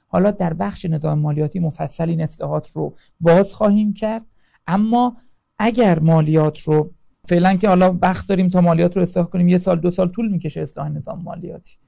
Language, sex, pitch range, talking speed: Persian, male, 155-200 Hz, 170 wpm